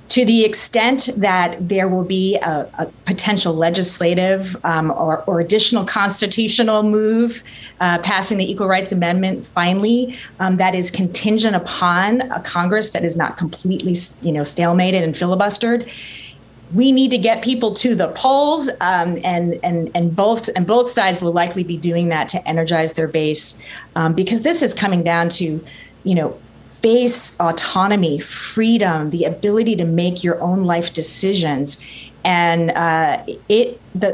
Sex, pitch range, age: female, 170-215 Hz, 30-49